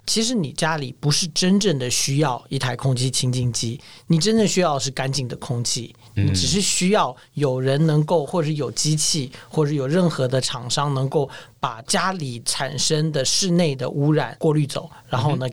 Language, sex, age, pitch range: Chinese, male, 40-59, 130-160 Hz